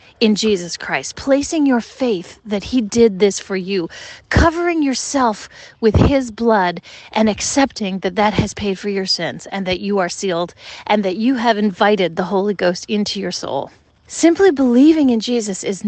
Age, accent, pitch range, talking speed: 30-49, American, 195-240 Hz, 180 wpm